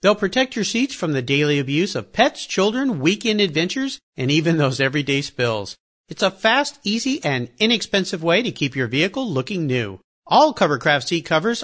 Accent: American